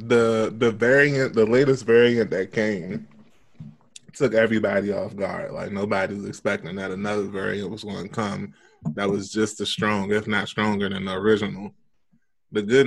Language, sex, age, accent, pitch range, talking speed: English, male, 20-39, American, 95-110 Hz, 170 wpm